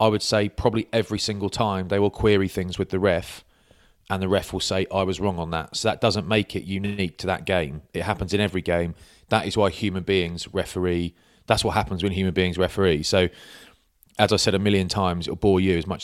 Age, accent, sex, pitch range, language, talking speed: 30-49, British, male, 90-105 Hz, English, 240 wpm